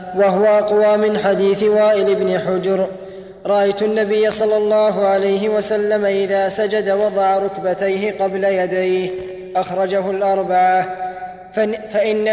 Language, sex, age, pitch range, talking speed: Arabic, male, 20-39, 185-210 Hz, 105 wpm